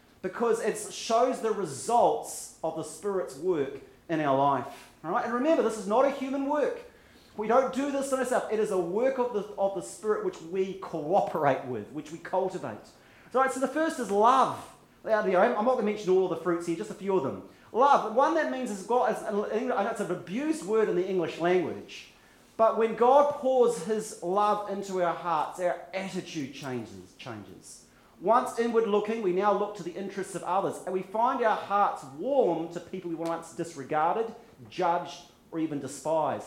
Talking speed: 195 wpm